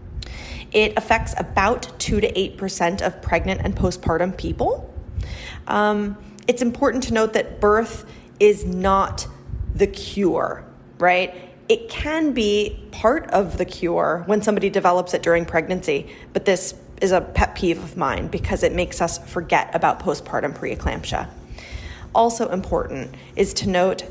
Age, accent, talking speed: 30-49, American, 140 wpm